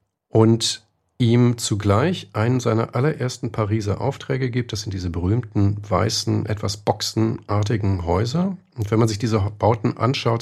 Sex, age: male, 40-59